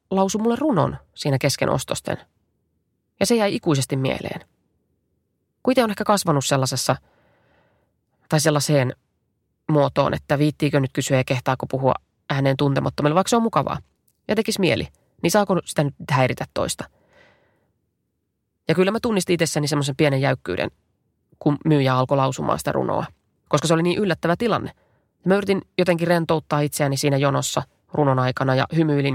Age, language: 20-39, Finnish